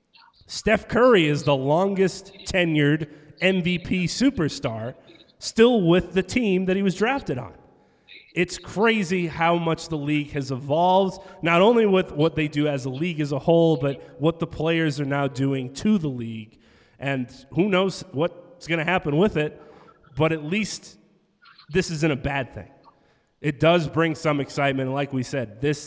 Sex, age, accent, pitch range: male, 30-49, American, 140-175 Hz